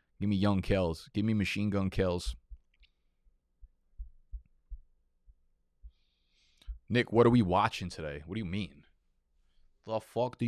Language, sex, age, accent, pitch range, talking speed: English, male, 20-39, American, 90-110 Hz, 125 wpm